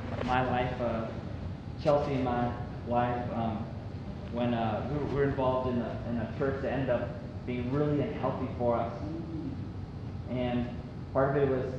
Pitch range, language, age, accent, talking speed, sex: 115-145 Hz, English, 20-39, American, 155 wpm, male